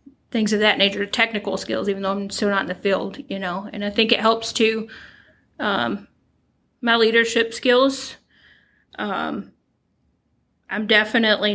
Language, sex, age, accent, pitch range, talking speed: English, female, 30-49, American, 195-215 Hz, 150 wpm